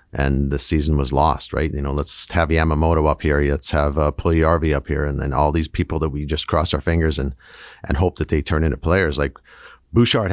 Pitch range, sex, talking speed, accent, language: 75-90 Hz, male, 230 wpm, American, English